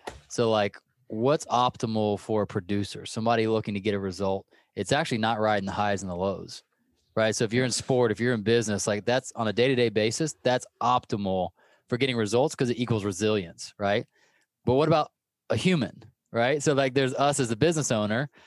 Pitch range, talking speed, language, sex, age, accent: 110-135 Hz, 200 wpm, English, male, 20-39, American